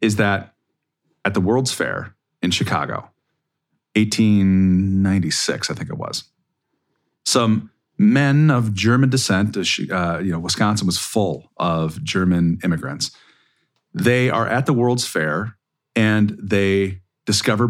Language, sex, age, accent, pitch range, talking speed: English, male, 40-59, American, 90-115 Hz, 120 wpm